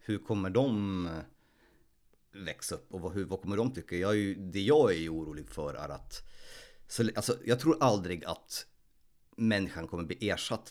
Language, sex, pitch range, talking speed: Swedish, male, 80-105 Hz, 165 wpm